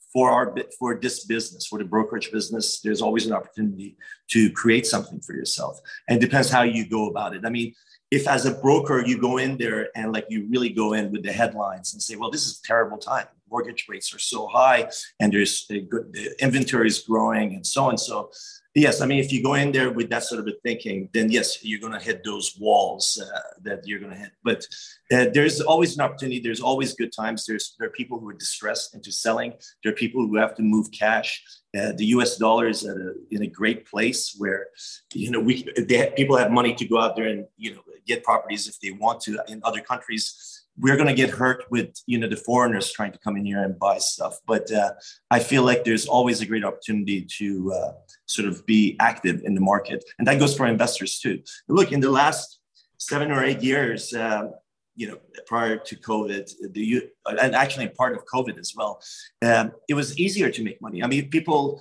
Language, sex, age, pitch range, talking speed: English, male, 40-59, 110-135 Hz, 230 wpm